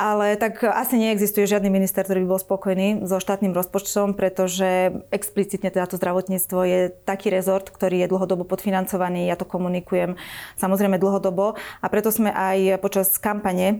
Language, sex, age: Slovak, female, 20-39